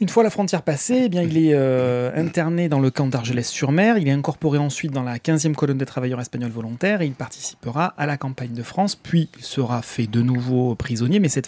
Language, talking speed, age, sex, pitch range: French, 230 wpm, 30-49, male, 125-170 Hz